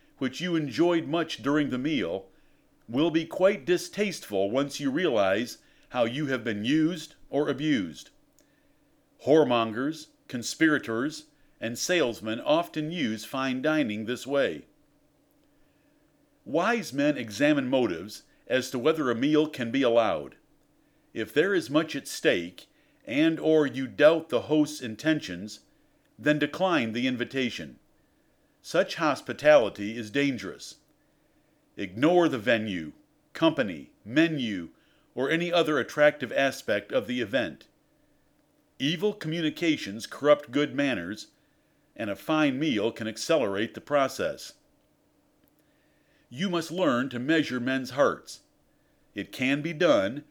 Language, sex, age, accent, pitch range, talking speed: English, male, 50-69, American, 125-165 Hz, 120 wpm